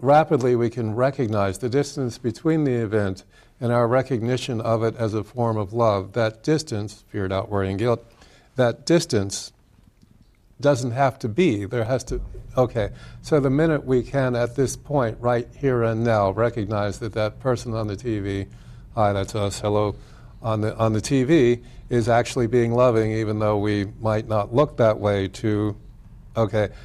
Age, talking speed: 50-69, 170 wpm